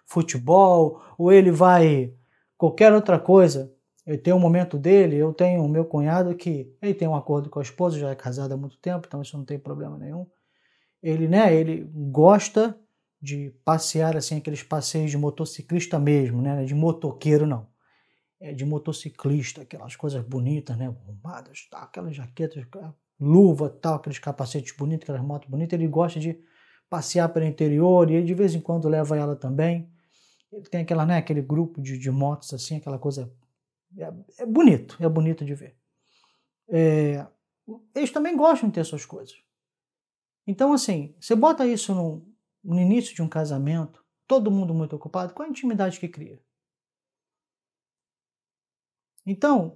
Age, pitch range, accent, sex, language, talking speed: 20-39, 145-195 Hz, Brazilian, male, Portuguese, 160 wpm